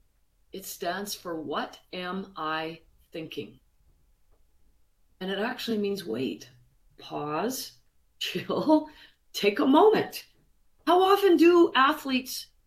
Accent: American